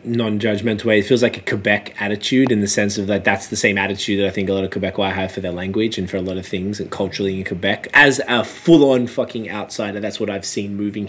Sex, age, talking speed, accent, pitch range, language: male, 20-39, 260 wpm, Australian, 105-120 Hz, English